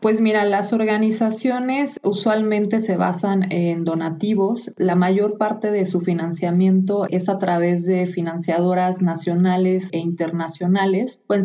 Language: Spanish